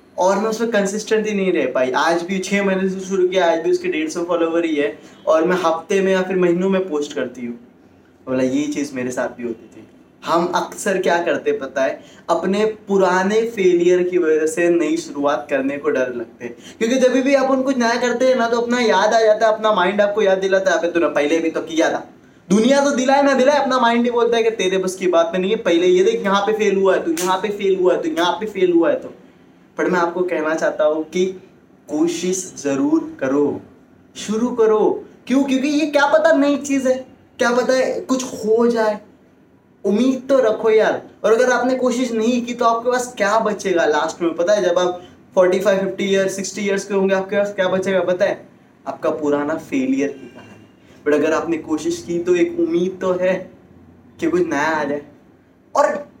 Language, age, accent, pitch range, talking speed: Hindi, 20-39, native, 170-240 Hz, 220 wpm